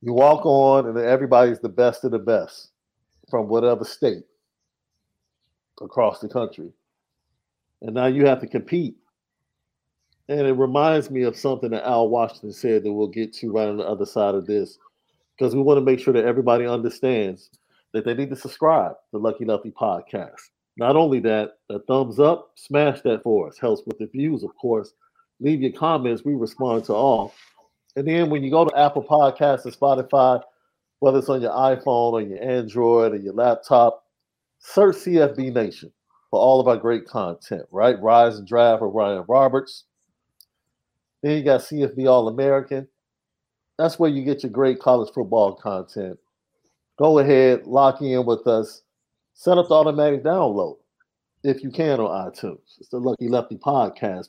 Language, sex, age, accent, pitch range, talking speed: English, male, 50-69, American, 115-145 Hz, 175 wpm